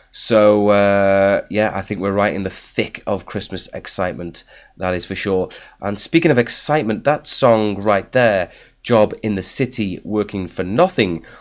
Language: English